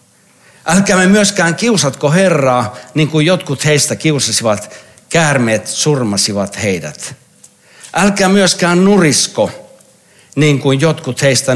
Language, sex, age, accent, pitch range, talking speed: Finnish, male, 60-79, native, 125-170 Hz, 105 wpm